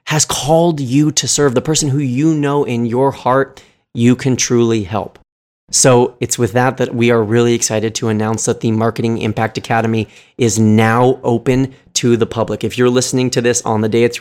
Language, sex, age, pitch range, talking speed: English, male, 30-49, 115-130 Hz, 205 wpm